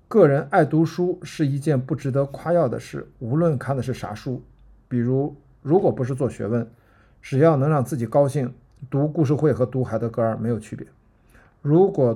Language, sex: Chinese, male